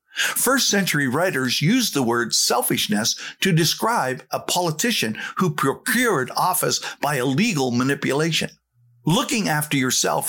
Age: 50-69